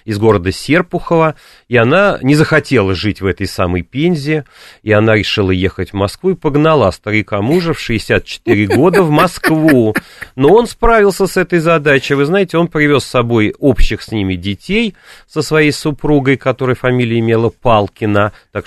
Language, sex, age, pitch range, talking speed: Russian, male, 40-59, 100-155 Hz, 165 wpm